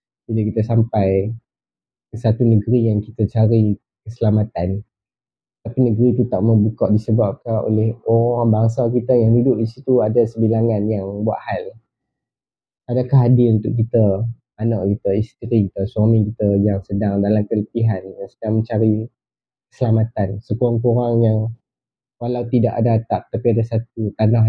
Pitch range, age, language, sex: 110-120 Hz, 20-39, Malay, male